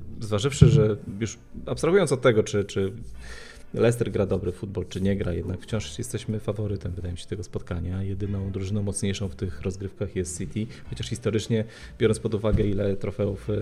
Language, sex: Polish, male